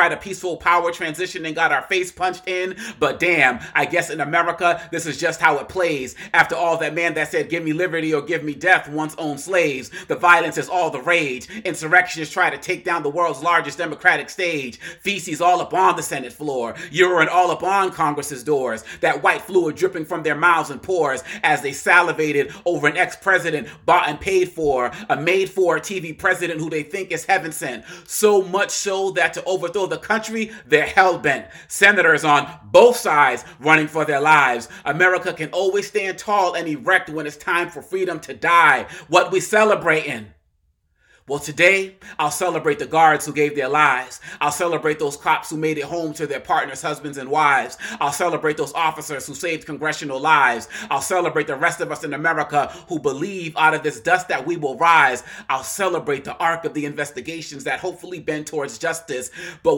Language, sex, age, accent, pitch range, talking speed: English, male, 30-49, American, 150-185 Hz, 200 wpm